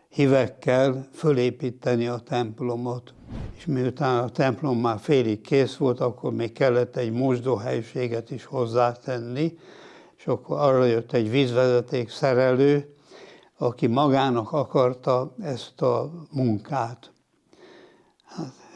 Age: 60-79